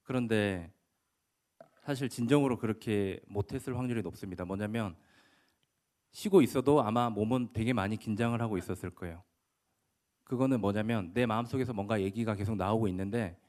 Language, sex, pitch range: Korean, male, 100-150 Hz